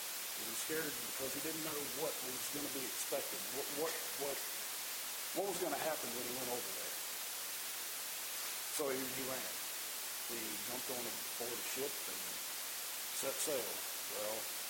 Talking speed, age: 165 wpm, 50-69